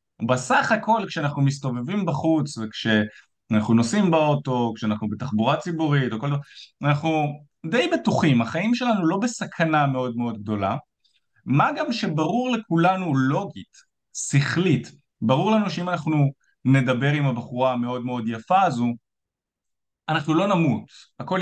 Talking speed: 120 wpm